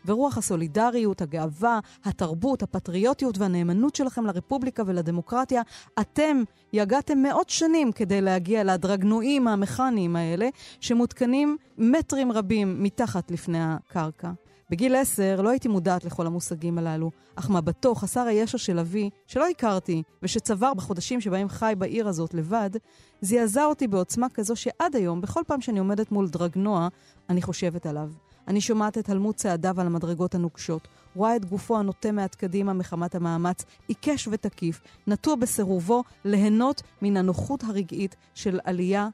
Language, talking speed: Hebrew, 135 wpm